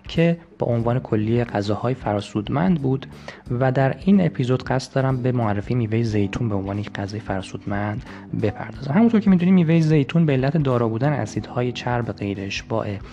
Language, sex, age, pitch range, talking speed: Persian, male, 20-39, 105-130 Hz, 165 wpm